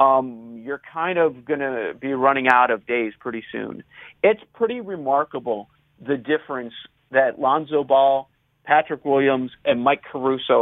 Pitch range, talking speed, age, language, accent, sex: 130-165 Hz, 145 wpm, 40-59, English, American, male